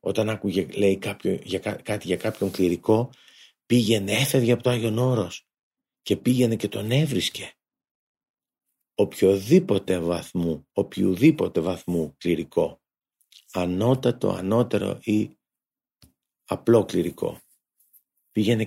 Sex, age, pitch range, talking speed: male, 50-69, 90-120 Hz, 90 wpm